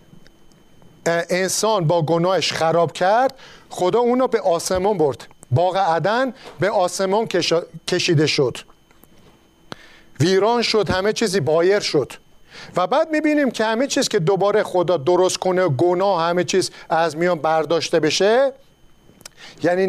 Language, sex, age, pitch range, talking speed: Persian, male, 50-69, 170-210 Hz, 125 wpm